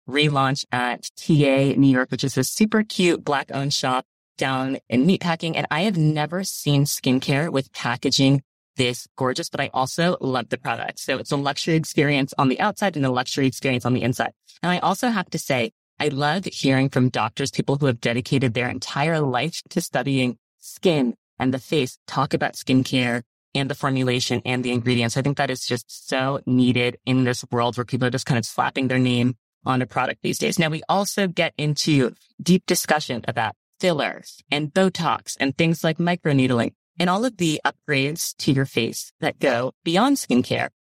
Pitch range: 130-170 Hz